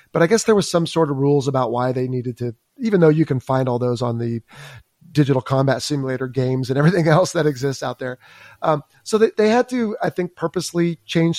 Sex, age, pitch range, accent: male, 30-49, 130-170 Hz, American